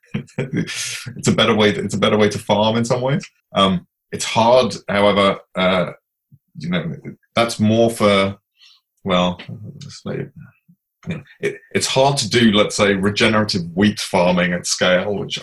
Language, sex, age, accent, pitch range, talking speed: English, male, 20-39, British, 95-115 Hz, 140 wpm